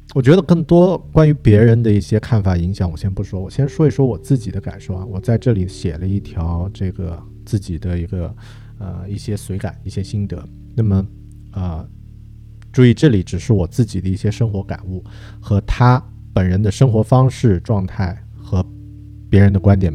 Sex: male